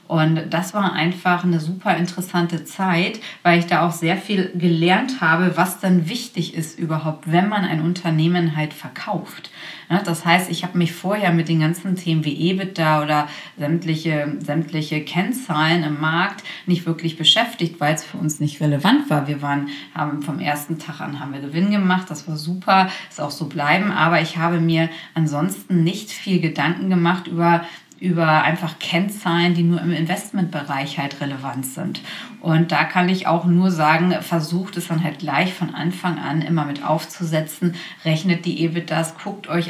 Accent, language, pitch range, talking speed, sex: German, German, 155-180 Hz, 175 wpm, female